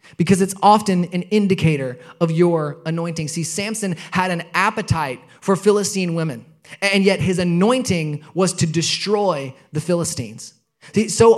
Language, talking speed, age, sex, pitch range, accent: English, 135 wpm, 20-39, male, 165-215 Hz, American